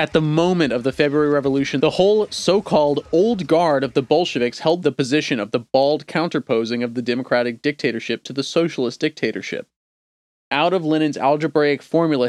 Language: English